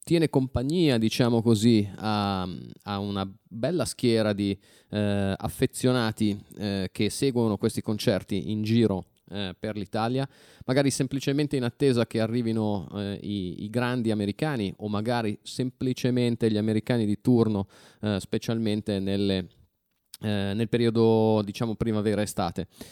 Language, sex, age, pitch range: Italian, male, 20-39, 105-125 Hz